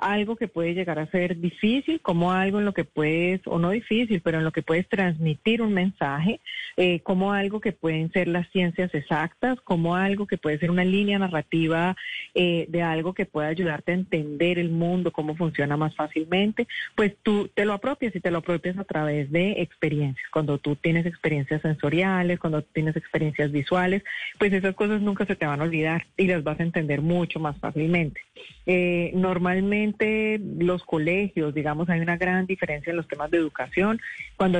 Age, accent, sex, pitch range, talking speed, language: 30-49, Colombian, female, 160-195 Hz, 190 wpm, Spanish